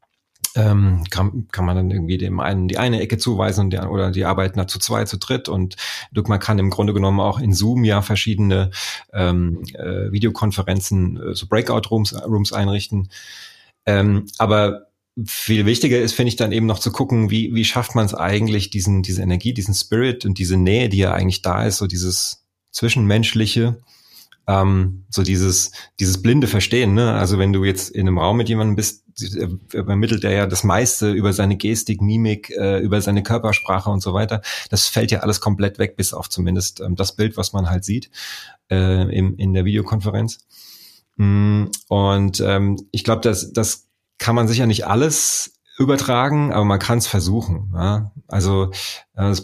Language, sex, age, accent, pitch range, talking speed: German, male, 30-49, German, 95-110 Hz, 175 wpm